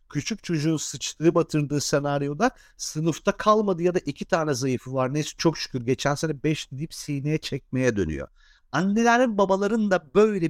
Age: 50-69